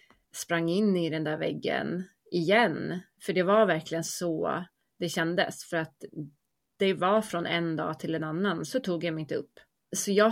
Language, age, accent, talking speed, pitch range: Swedish, 30-49, native, 185 wpm, 165-200 Hz